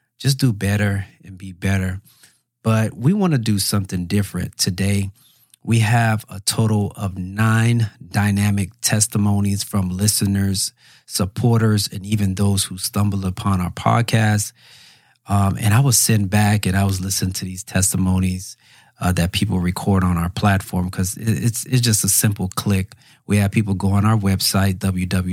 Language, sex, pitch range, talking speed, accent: English, male, 95-110 Hz, 160 wpm, American